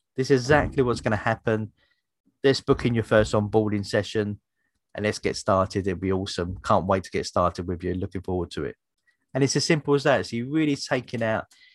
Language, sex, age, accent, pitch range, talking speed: English, male, 30-49, British, 100-120 Hz, 220 wpm